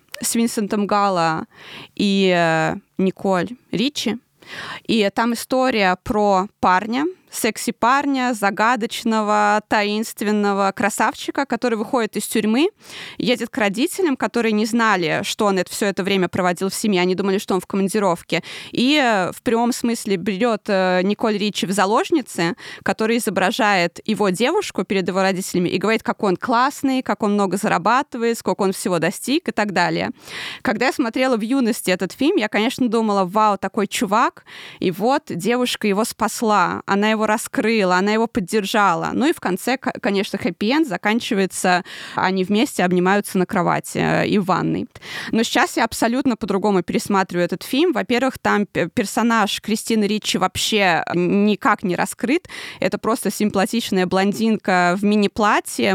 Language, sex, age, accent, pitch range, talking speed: Russian, female, 20-39, native, 195-235 Hz, 145 wpm